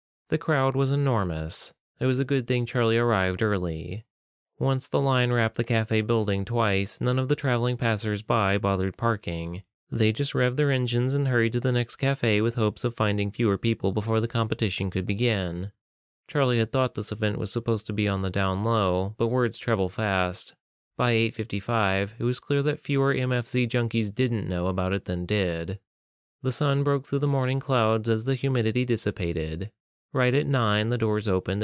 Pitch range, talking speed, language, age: 100-130 Hz, 185 wpm, English, 30-49